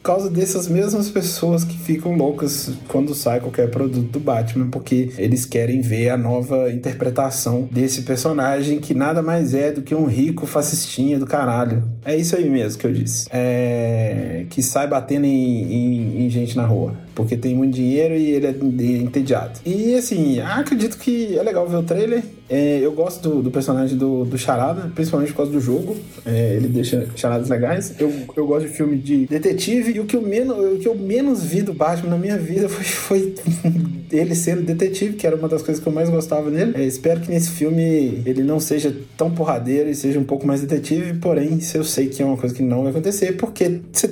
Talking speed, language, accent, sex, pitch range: 210 wpm, Portuguese, Brazilian, male, 125-165 Hz